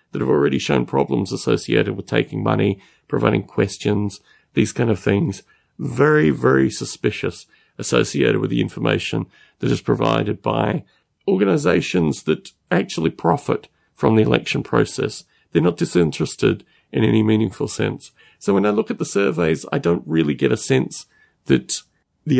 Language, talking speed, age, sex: English, 150 wpm, 40-59, male